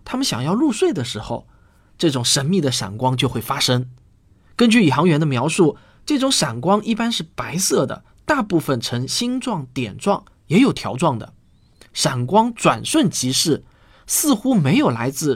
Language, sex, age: Chinese, male, 20-39